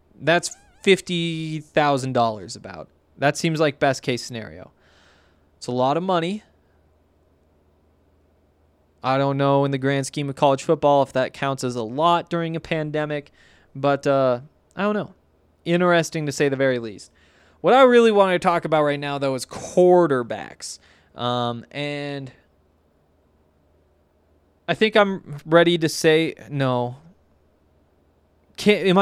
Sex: male